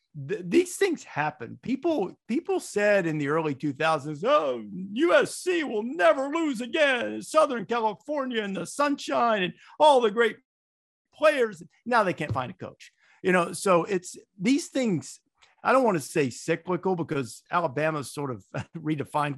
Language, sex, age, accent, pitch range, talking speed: English, male, 50-69, American, 130-190 Hz, 150 wpm